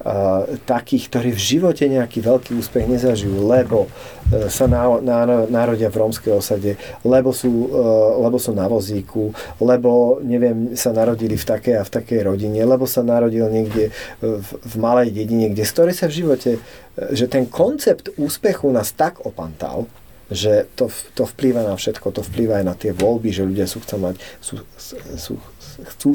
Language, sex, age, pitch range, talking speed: Slovak, male, 40-59, 100-125 Hz, 170 wpm